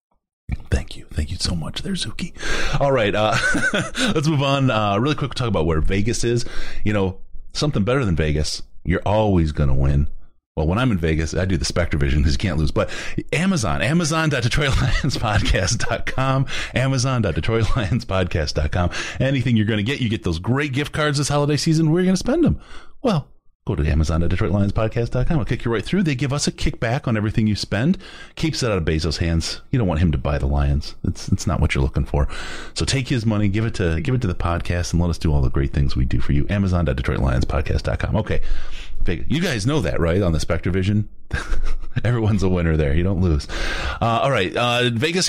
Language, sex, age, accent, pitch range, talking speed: English, male, 30-49, American, 85-130 Hz, 210 wpm